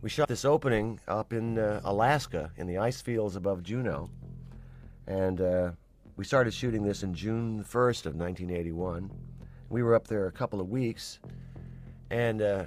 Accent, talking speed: American, 160 wpm